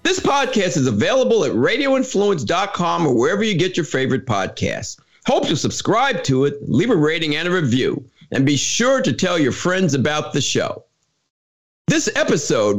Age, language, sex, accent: 50-69, English, male, American